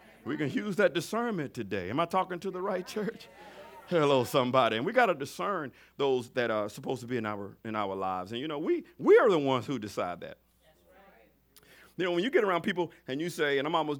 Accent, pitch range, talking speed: American, 130-180 Hz, 230 wpm